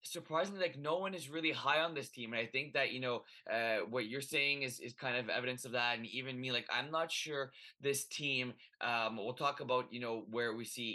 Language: English